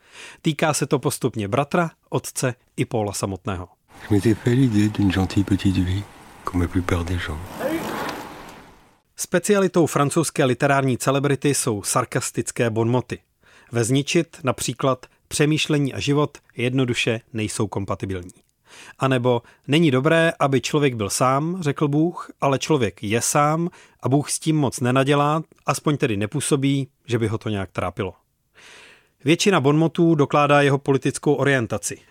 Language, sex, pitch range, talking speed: Czech, male, 115-150 Hz, 110 wpm